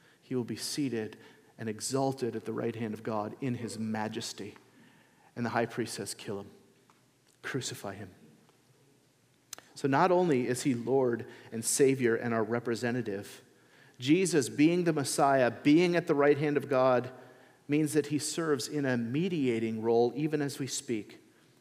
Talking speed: 160 wpm